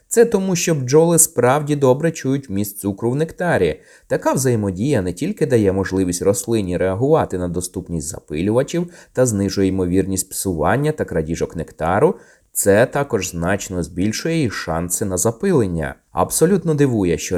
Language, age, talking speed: Ukrainian, 20-39, 140 wpm